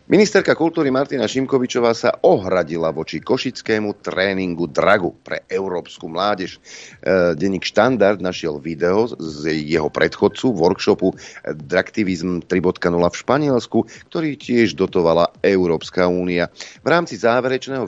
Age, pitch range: 40-59, 85-120 Hz